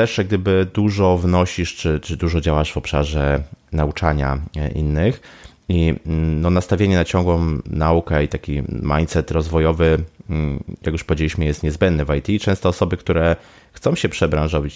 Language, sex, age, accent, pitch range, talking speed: Polish, male, 30-49, native, 75-95 Hz, 140 wpm